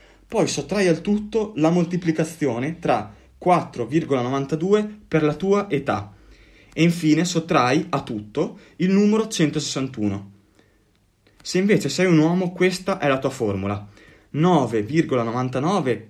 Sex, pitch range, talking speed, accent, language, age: male, 115-165 Hz, 115 wpm, native, Italian, 30-49